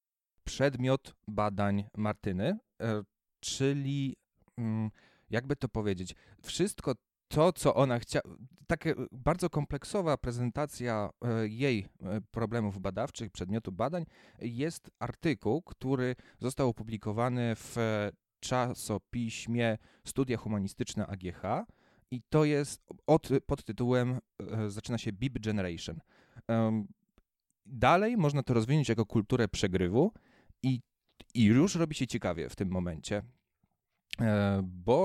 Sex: male